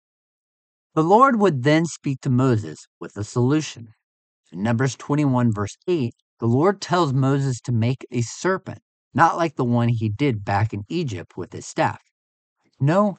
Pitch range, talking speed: 110-165 Hz, 165 wpm